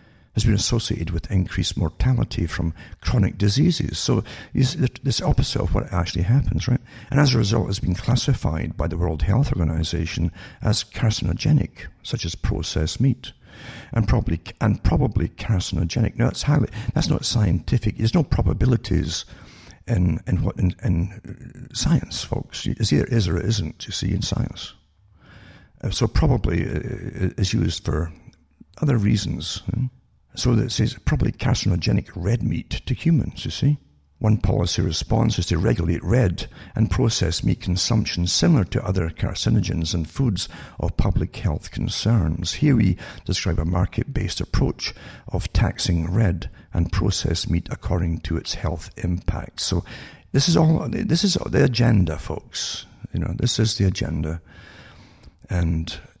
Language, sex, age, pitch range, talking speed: English, male, 60-79, 85-120 Hz, 150 wpm